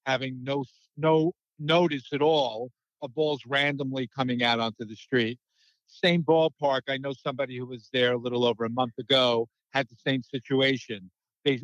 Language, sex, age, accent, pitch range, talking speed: English, male, 50-69, American, 125-160 Hz, 170 wpm